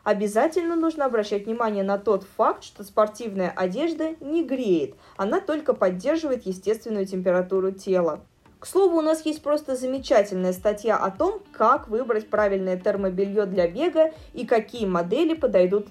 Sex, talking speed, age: female, 145 wpm, 20-39